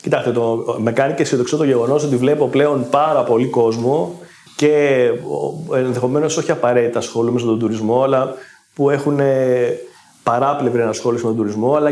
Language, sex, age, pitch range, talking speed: Greek, male, 30-49, 120-160 Hz, 155 wpm